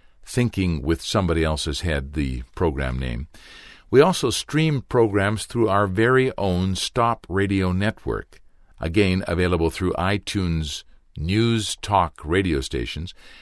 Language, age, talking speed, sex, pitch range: English, 60-79, 120 wpm, male, 70-100 Hz